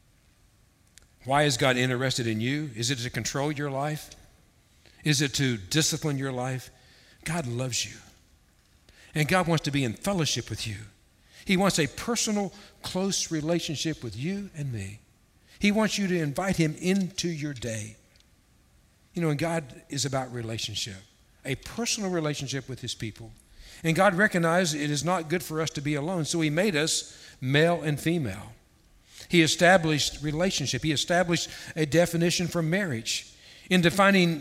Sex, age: male, 60-79